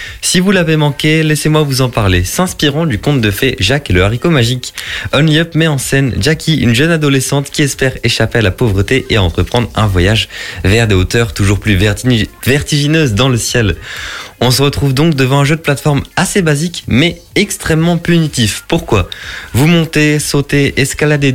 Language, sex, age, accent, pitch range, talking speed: French, male, 20-39, French, 100-140 Hz, 180 wpm